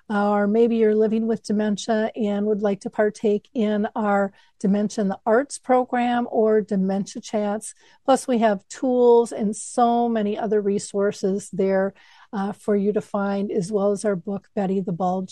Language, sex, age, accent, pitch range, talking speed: English, female, 50-69, American, 200-230 Hz, 175 wpm